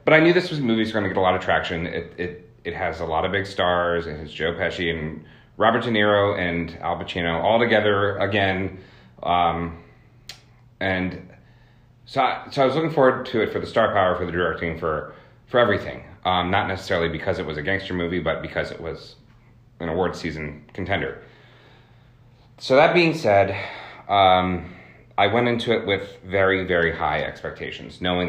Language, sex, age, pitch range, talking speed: English, male, 30-49, 85-115 Hz, 195 wpm